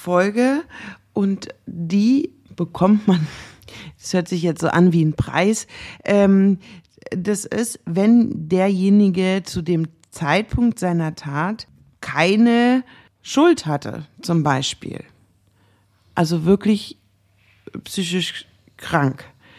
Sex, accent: female, German